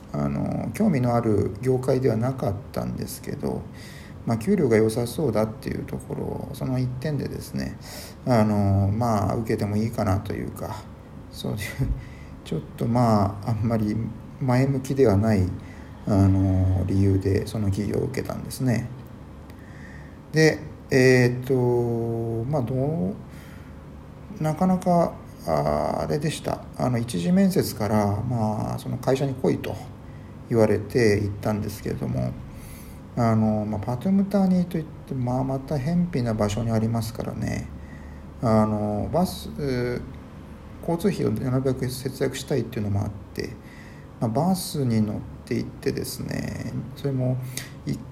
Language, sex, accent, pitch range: Japanese, male, native, 100-135 Hz